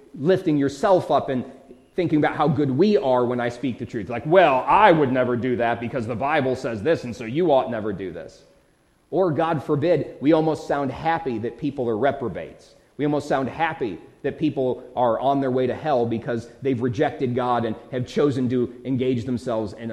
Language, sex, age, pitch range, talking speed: English, male, 30-49, 125-155 Hz, 205 wpm